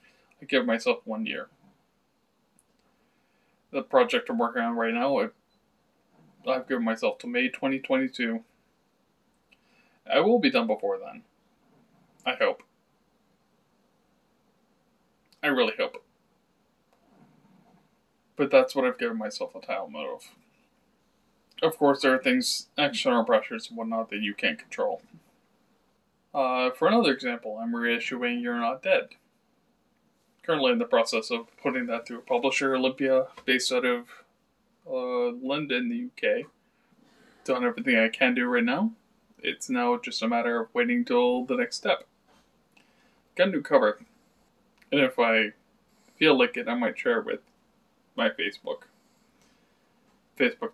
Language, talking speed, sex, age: English, 135 wpm, male, 20-39